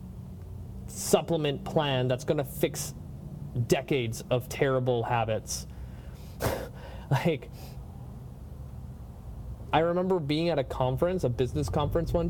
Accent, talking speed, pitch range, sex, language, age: American, 100 wpm, 120-155 Hz, male, English, 20-39